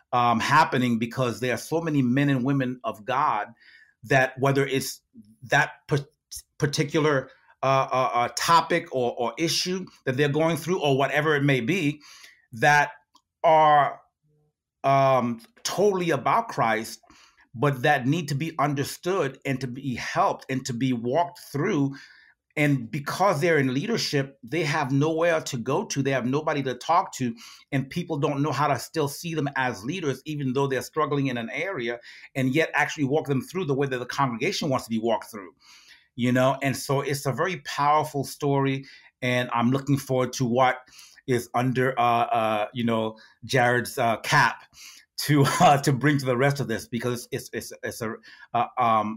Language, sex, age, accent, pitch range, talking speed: English, male, 40-59, American, 125-150 Hz, 175 wpm